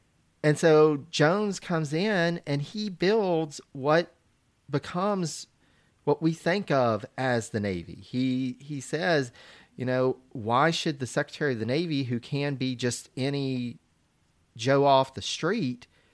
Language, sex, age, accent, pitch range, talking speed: English, male, 40-59, American, 115-150 Hz, 140 wpm